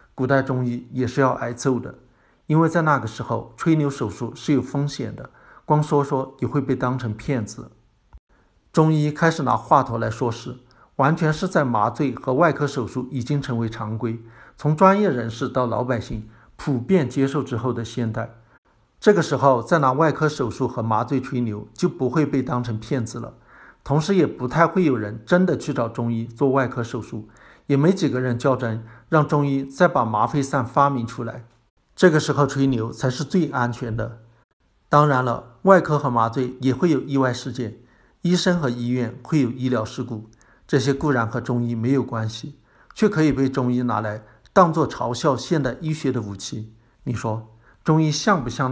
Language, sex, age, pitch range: Chinese, male, 60-79, 115-145 Hz